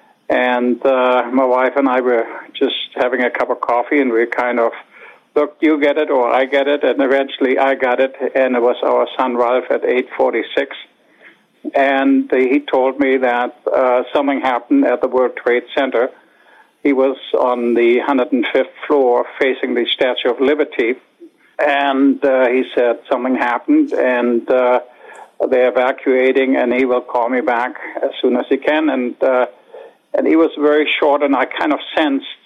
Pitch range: 125-145 Hz